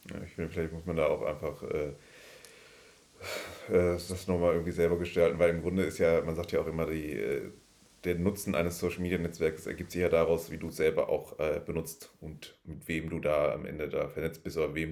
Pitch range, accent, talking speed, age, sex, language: 85-105 Hz, German, 225 wpm, 30-49, male, German